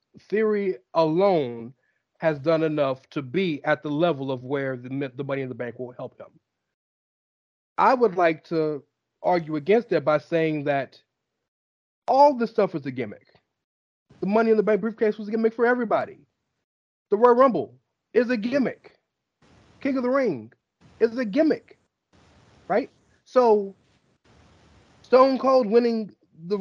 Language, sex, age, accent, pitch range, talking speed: English, male, 30-49, American, 150-225 Hz, 150 wpm